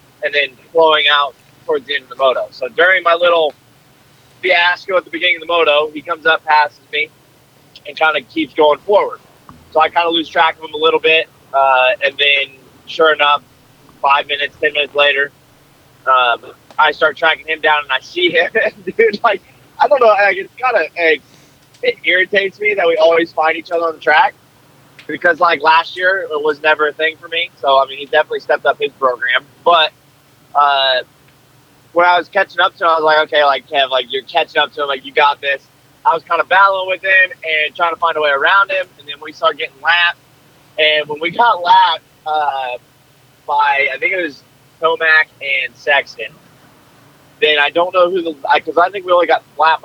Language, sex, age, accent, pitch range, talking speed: English, male, 20-39, American, 145-175 Hz, 210 wpm